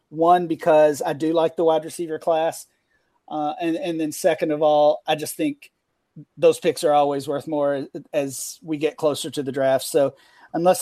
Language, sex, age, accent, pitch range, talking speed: English, male, 40-59, American, 155-180 Hz, 190 wpm